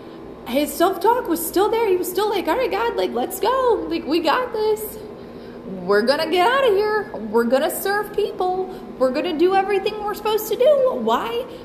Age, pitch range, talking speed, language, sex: 20-39, 225-355 Hz, 210 wpm, English, female